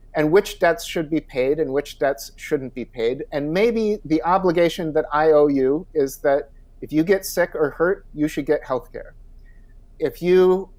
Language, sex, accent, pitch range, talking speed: English, male, American, 145-185 Hz, 190 wpm